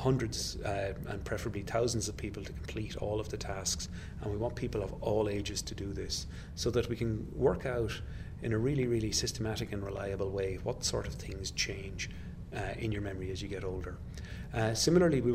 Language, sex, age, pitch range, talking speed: English, male, 30-49, 95-110 Hz, 205 wpm